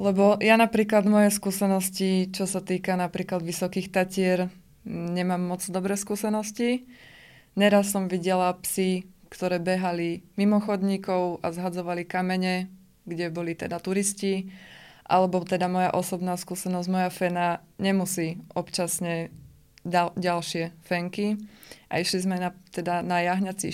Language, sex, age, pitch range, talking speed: Slovak, female, 20-39, 180-200 Hz, 120 wpm